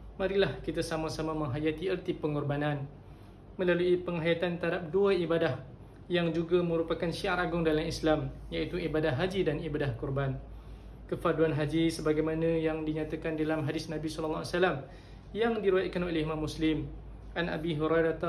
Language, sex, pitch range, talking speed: Malay, male, 155-180 Hz, 140 wpm